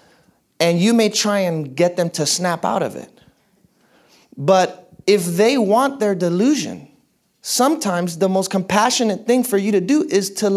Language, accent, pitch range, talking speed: English, American, 165-220 Hz, 165 wpm